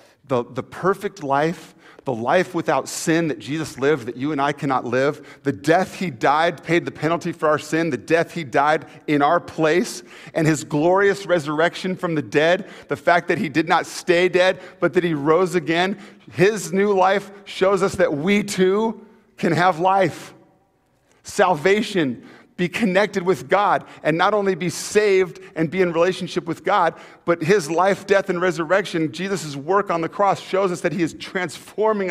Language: English